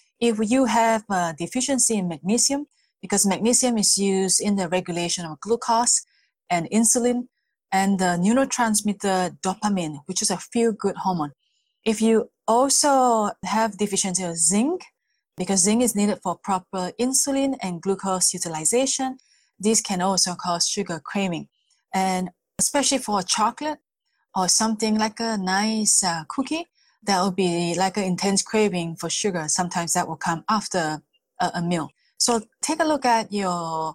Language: English